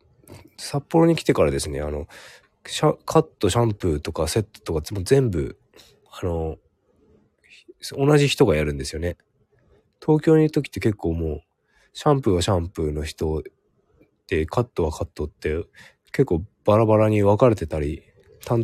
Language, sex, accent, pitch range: Japanese, male, native, 85-115 Hz